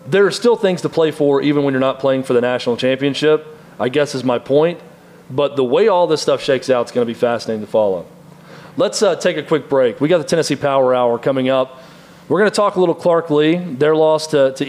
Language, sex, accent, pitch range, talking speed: English, male, American, 135-165 Hz, 255 wpm